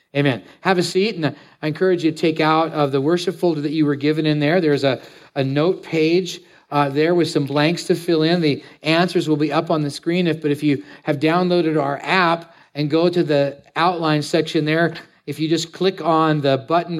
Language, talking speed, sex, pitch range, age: English, 225 wpm, male, 145-175 Hz, 40-59